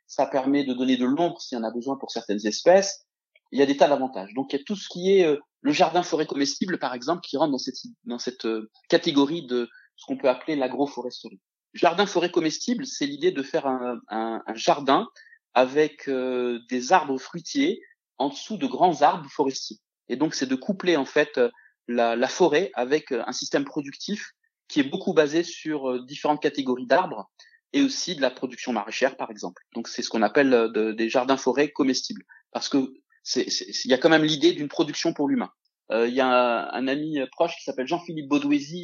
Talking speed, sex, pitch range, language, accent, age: 215 wpm, male, 125-180 Hz, French, French, 30-49